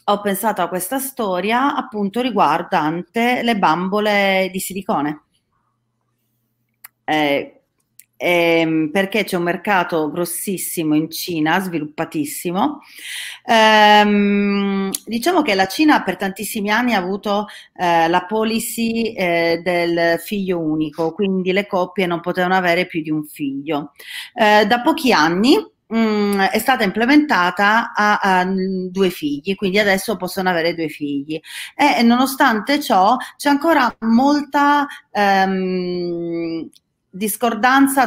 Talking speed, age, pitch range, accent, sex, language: 120 wpm, 40-59, 170-220 Hz, native, female, Italian